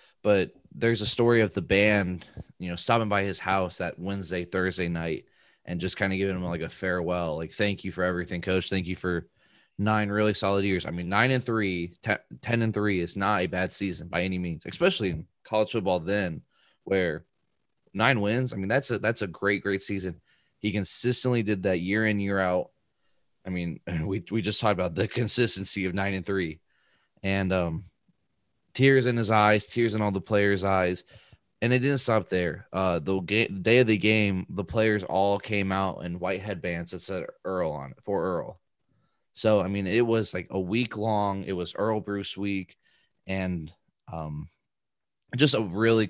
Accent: American